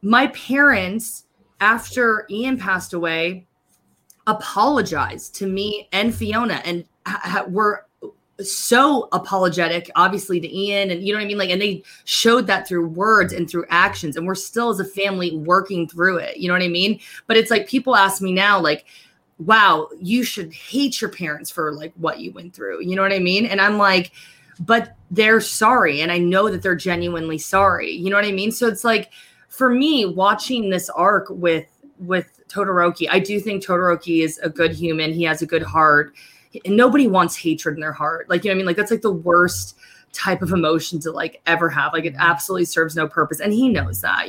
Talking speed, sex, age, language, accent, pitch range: 205 wpm, female, 20-39, English, American, 170-210 Hz